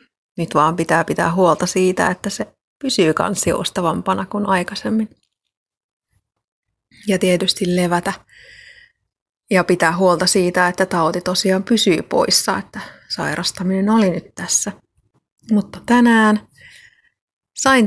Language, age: Finnish, 30-49